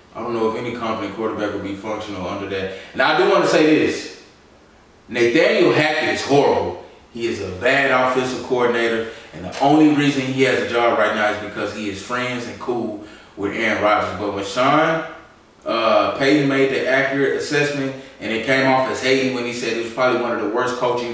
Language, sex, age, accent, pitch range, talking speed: English, male, 20-39, American, 100-120 Hz, 215 wpm